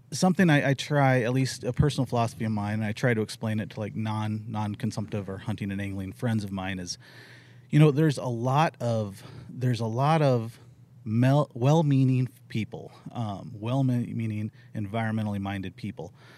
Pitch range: 110-135 Hz